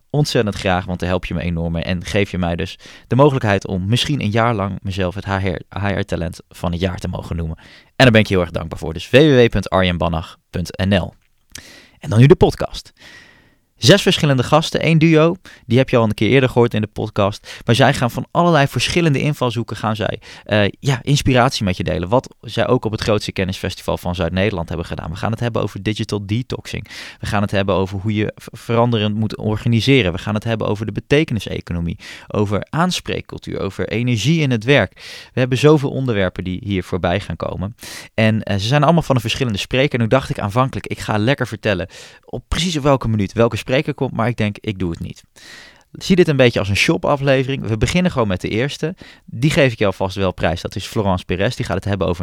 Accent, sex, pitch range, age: Dutch, male, 95-125 Hz, 20-39